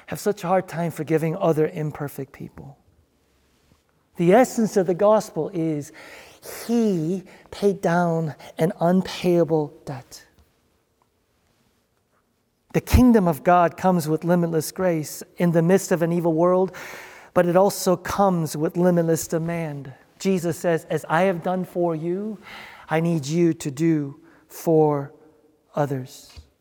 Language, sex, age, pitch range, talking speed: English, male, 50-69, 155-200 Hz, 130 wpm